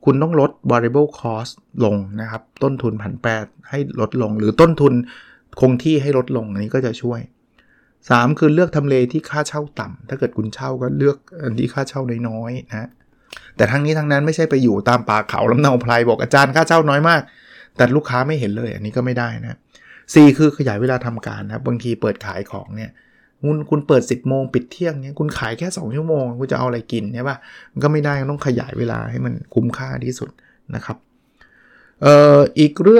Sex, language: male, Thai